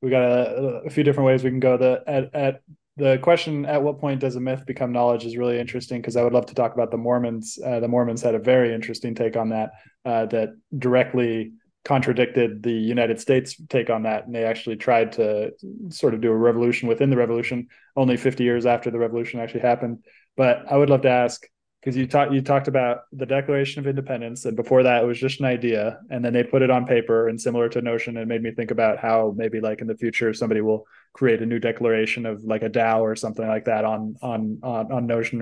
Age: 20-39